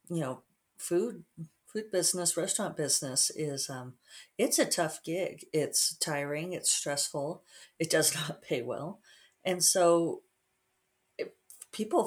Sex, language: female, English